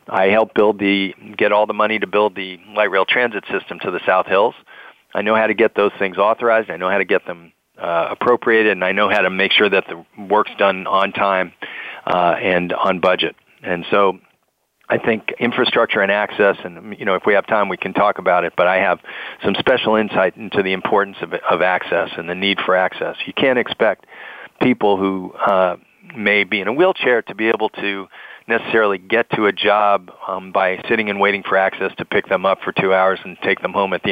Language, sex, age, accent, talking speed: English, male, 40-59, American, 225 wpm